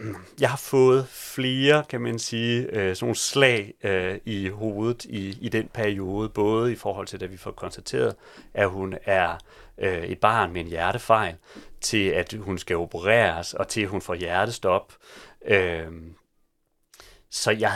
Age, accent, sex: 40-59, native, male